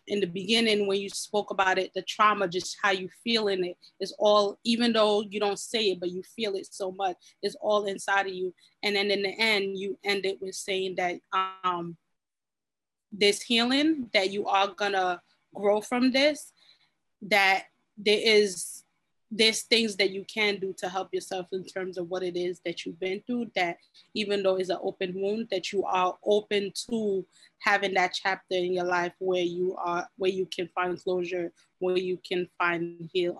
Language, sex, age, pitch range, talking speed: English, female, 20-39, 180-205 Hz, 195 wpm